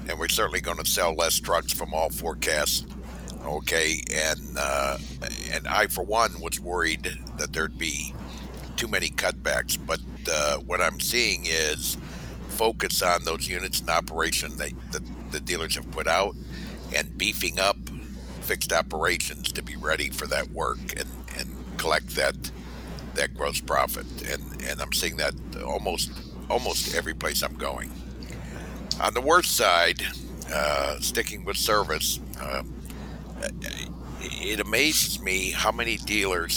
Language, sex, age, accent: English, male, 60-79, American